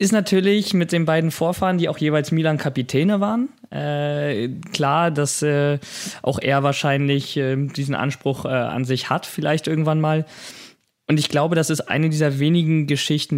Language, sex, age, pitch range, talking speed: German, male, 20-39, 130-155 Hz, 165 wpm